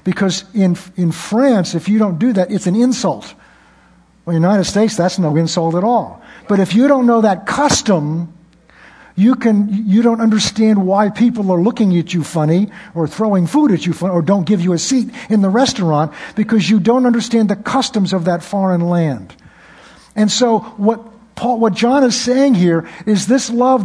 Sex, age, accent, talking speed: male, 60-79, American, 195 wpm